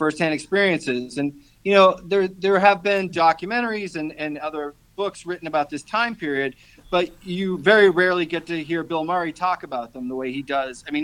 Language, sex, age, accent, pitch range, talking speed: English, male, 40-59, American, 135-170 Hz, 200 wpm